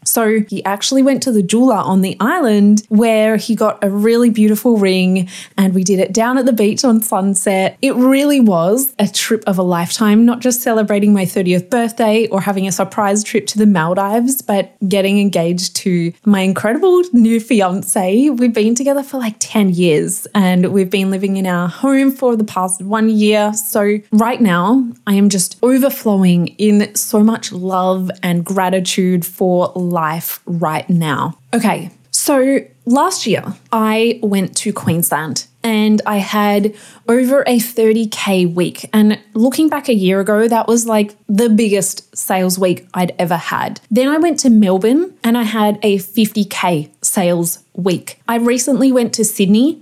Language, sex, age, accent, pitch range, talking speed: English, female, 20-39, Australian, 190-230 Hz, 175 wpm